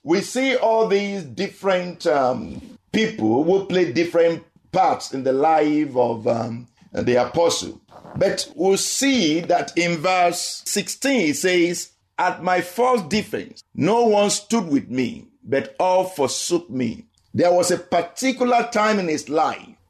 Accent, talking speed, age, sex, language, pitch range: Nigerian, 150 wpm, 50-69, male, English, 135-190 Hz